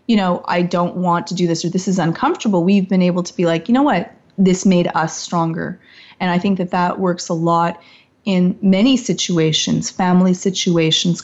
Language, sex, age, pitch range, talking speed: English, female, 30-49, 175-205 Hz, 205 wpm